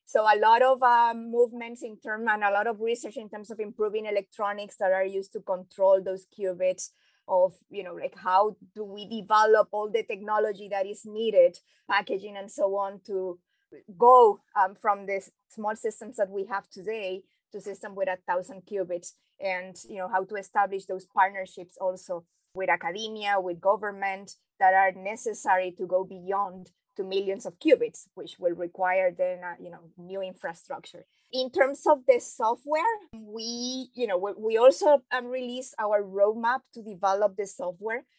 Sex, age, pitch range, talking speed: female, 20-39, 195-250 Hz, 170 wpm